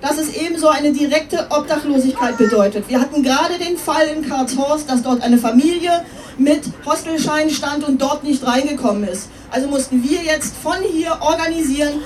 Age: 40-59